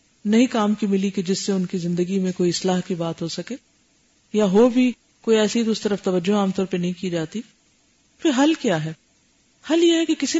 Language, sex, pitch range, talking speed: Urdu, female, 185-245 Hz, 230 wpm